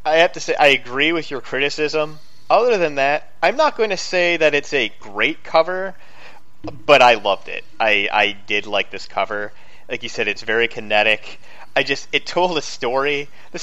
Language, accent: English, American